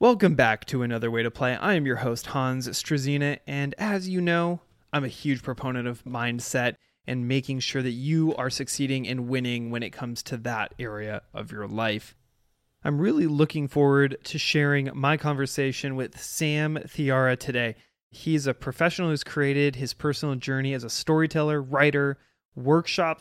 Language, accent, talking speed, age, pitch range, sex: English, American, 170 wpm, 20-39, 125-145 Hz, male